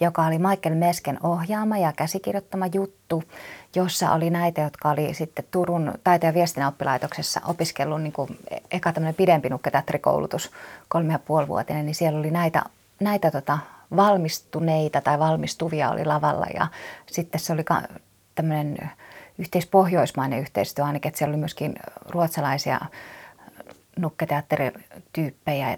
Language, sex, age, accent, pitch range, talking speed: Finnish, female, 20-39, native, 150-180 Hz, 120 wpm